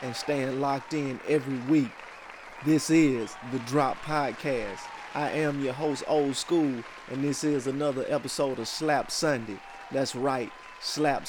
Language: English